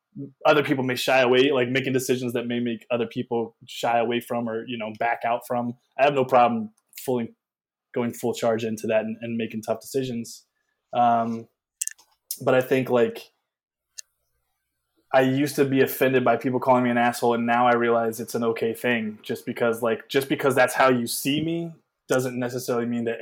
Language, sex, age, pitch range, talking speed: English, male, 20-39, 120-140 Hz, 195 wpm